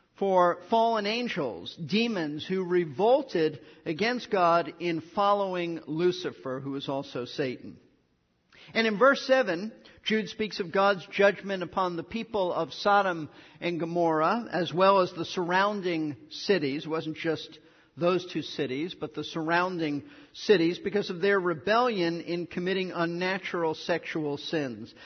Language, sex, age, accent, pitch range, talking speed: English, male, 50-69, American, 160-210 Hz, 135 wpm